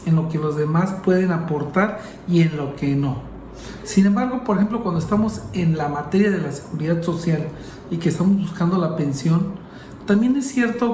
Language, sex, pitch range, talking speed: Spanish, male, 170-210 Hz, 185 wpm